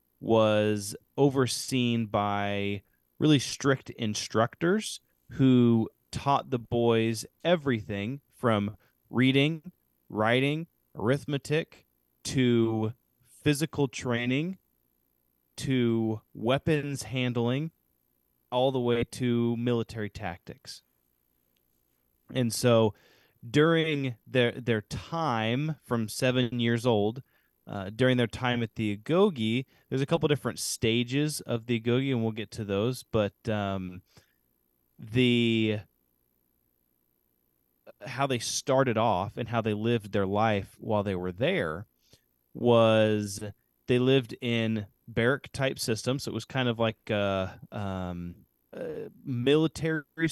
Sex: male